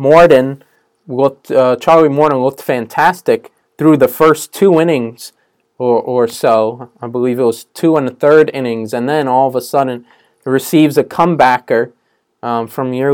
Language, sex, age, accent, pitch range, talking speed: English, male, 20-39, American, 125-155 Hz, 165 wpm